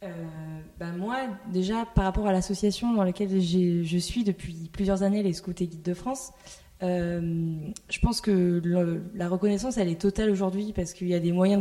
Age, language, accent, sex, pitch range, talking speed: 20-39, French, French, female, 180-205 Hz, 200 wpm